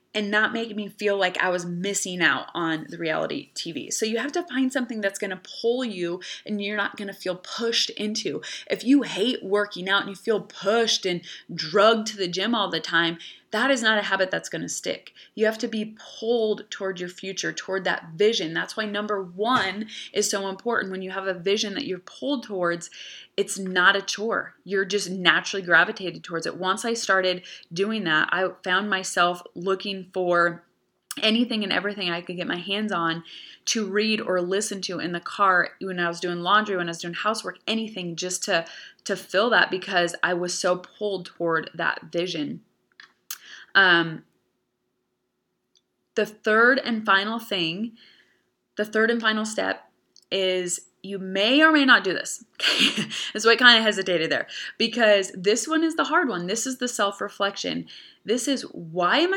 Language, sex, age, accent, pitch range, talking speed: English, female, 20-39, American, 180-220 Hz, 190 wpm